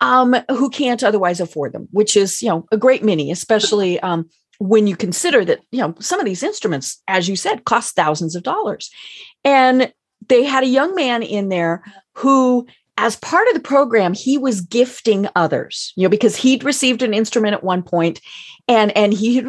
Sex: female